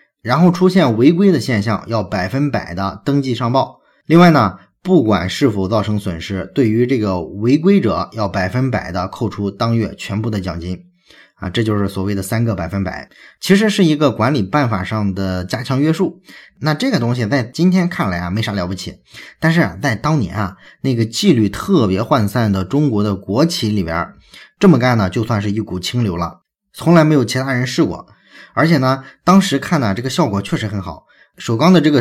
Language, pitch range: Chinese, 100-140 Hz